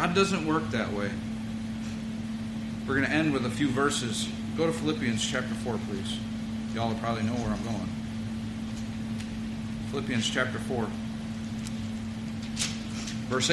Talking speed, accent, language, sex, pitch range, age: 135 wpm, American, English, male, 110-160 Hz, 40-59